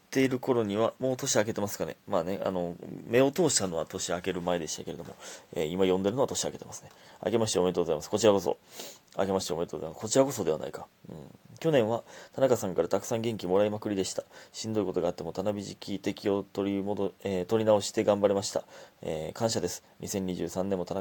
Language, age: Japanese, 20-39